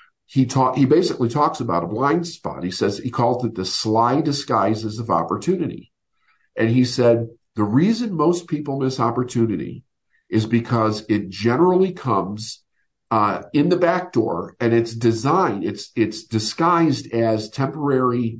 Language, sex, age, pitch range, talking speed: English, male, 50-69, 105-140 Hz, 150 wpm